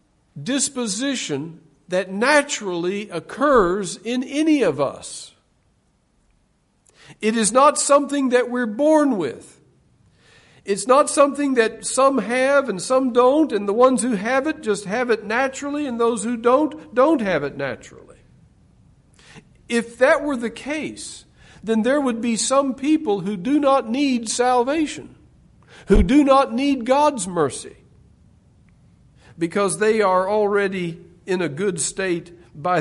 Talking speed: 135 wpm